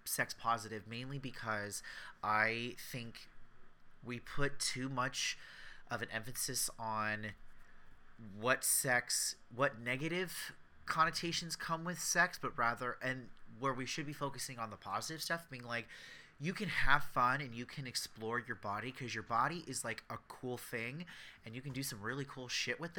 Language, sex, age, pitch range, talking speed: English, male, 30-49, 110-135 Hz, 165 wpm